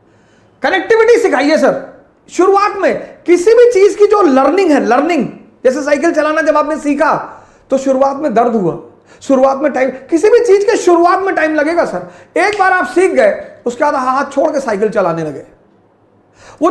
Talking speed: 180 wpm